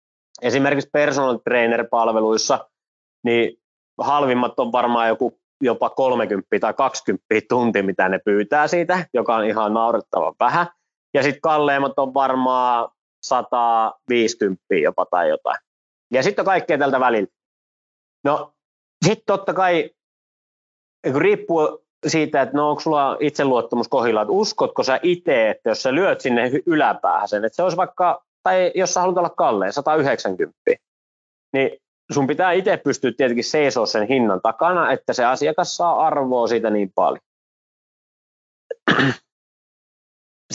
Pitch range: 115-160 Hz